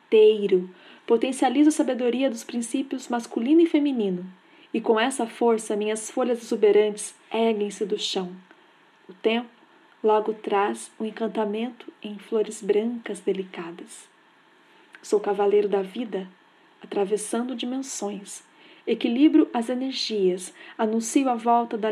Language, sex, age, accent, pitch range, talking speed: Portuguese, female, 40-59, Brazilian, 210-265 Hz, 120 wpm